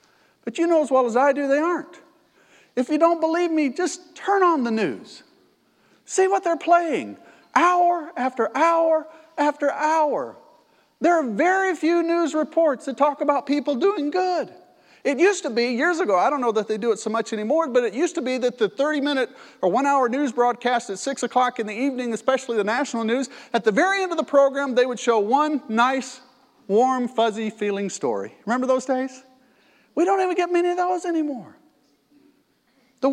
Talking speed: 195 wpm